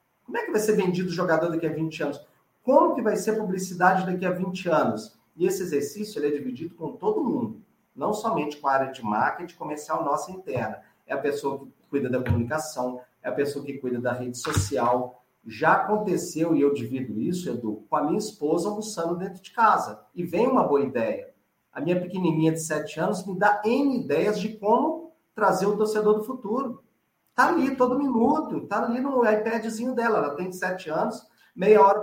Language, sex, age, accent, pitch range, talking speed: Portuguese, male, 40-59, Brazilian, 145-215 Hz, 205 wpm